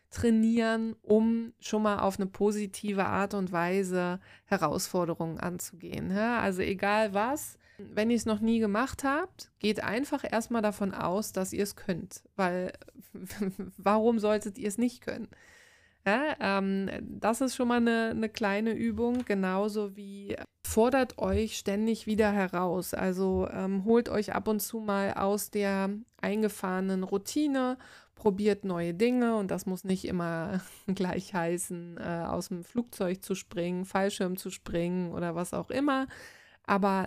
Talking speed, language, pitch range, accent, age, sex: 145 wpm, Dutch, 190-220 Hz, German, 20-39, female